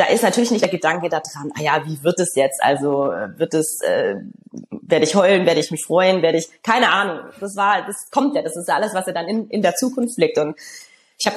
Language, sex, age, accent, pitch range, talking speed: German, female, 20-39, German, 175-220 Hz, 260 wpm